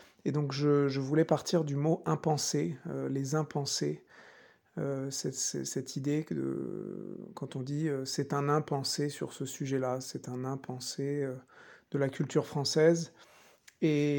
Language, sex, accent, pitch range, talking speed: French, male, French, 135-155 Hz, 160 wpm